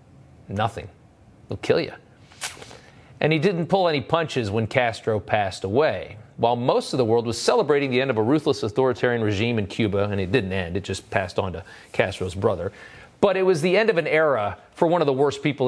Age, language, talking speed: 40-59, English, 210 wpm